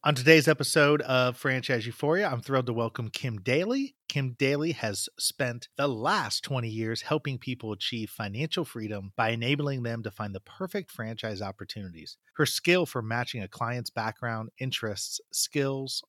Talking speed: 160 wpm